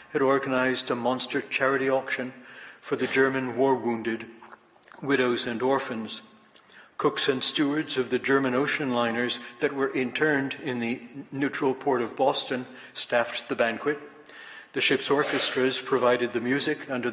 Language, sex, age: English, male, 60-79